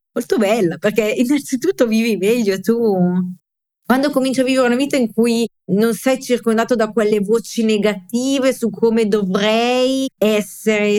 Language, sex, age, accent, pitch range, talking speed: English, female, 30-49, Italian, 195-235 Hz, 140 wpm